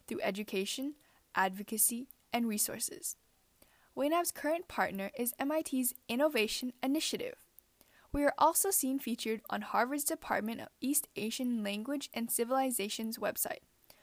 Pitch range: 210-275 Hz